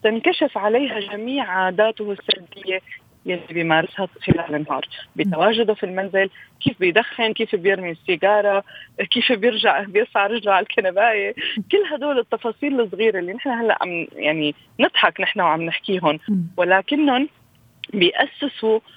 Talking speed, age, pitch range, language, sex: 115 wpm, 20-39, 185-240 Hz, Arabic, female